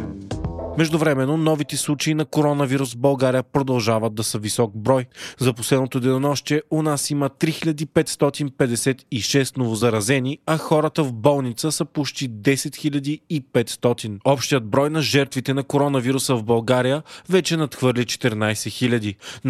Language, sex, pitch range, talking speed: Bulgarian, male, 125-150 Hz, 120 wpm